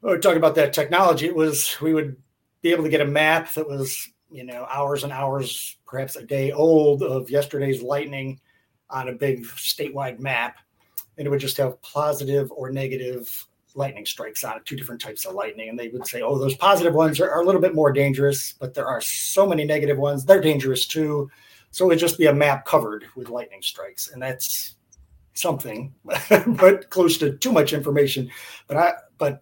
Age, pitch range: 30-49, 130-155 Hz